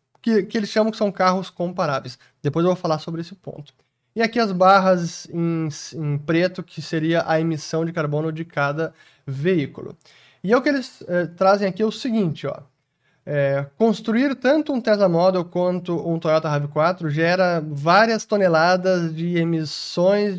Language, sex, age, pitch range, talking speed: Portuguese, male, 20-39, 155-200 Hz, 160 wpm